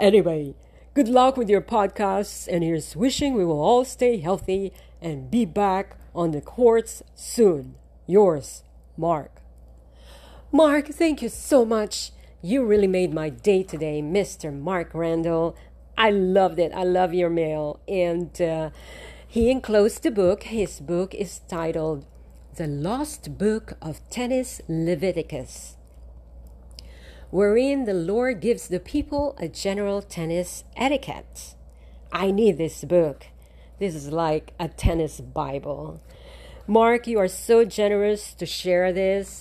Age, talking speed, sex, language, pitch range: 40-59, 135 wpm, female, English, 145-205 Hz